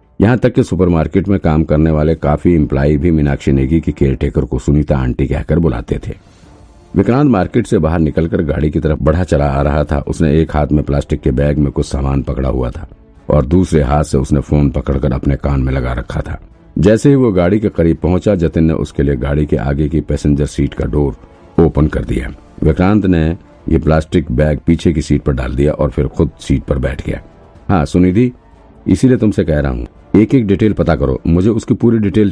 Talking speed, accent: 215 wpm, native